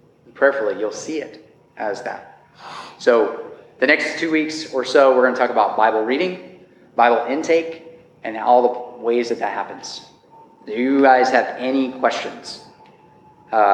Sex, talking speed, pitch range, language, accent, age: male, 155 wpm, 115-165 Hz, English, American, 30-49